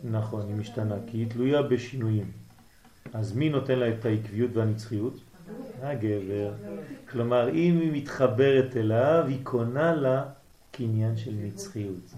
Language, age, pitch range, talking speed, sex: French, 40-59, 110-155 Hz, 125 wpm, male